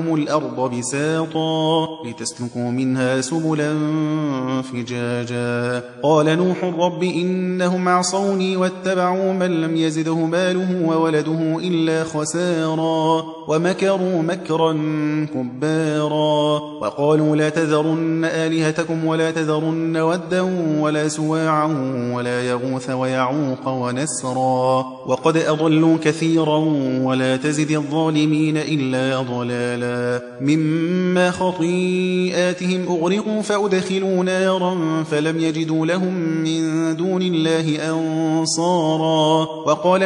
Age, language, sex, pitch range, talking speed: 20-39, Persian, male, 150-175 Hz, 85 wpm